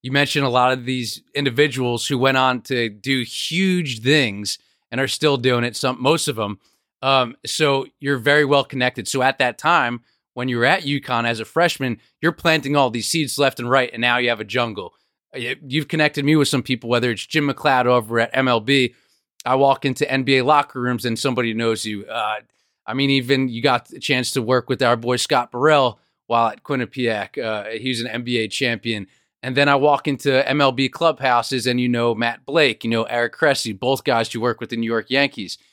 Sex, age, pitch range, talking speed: male, 30-49, 120-140 Hz, 210 wpm